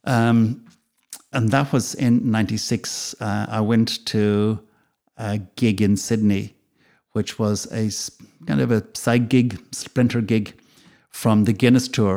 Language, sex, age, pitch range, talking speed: English, male, 60-79, 95-115 Hz, 140 wpm